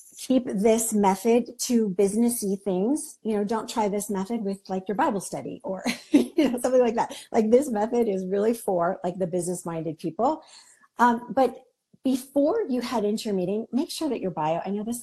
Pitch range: 190-245 Hz